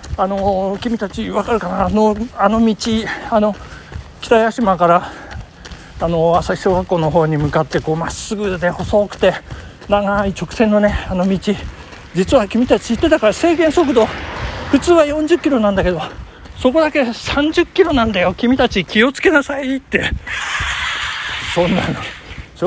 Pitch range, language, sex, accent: 180-260 Hz, Japanese, male, native